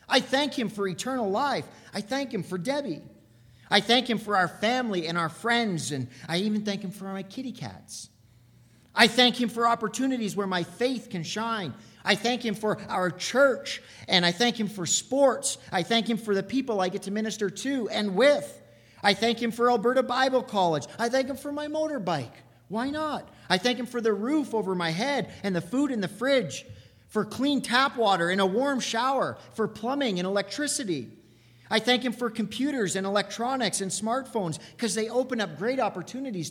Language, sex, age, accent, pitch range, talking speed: English, male, 40-59, American, 165-240 Hz, 200 wpm